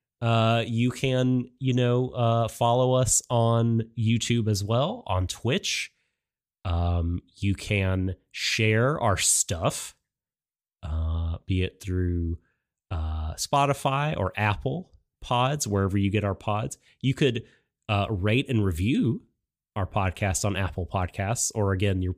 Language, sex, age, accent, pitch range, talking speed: English, male, 30-49, American, 95-130 Hz, 130 wpm